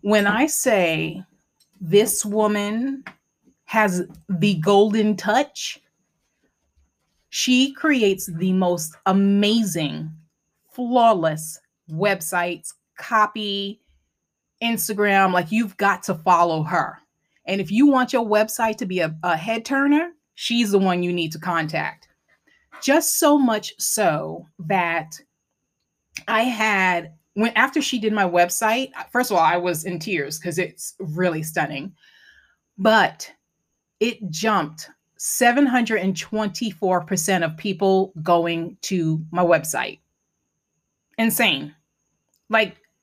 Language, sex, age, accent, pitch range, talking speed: English, female, 30-49, American, 175-225 Hz, 110 wpm